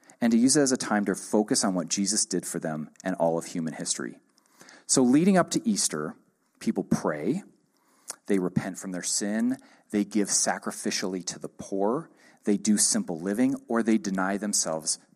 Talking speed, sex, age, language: 180 wpm, male, 40-59, English